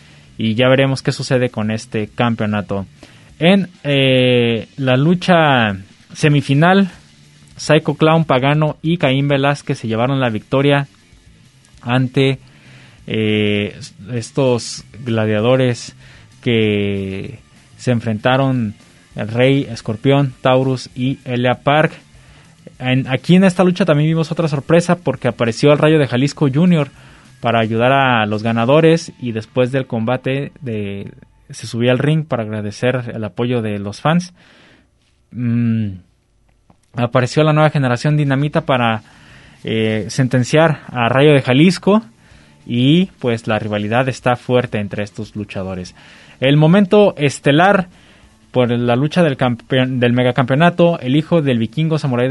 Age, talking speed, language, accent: 20-39, 125 wpm, Spanish, Mexican